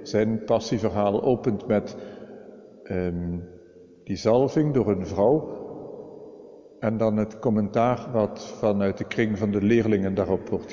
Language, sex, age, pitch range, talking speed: Dutch, male, 50-69, 105-130 Hz, 130 wpm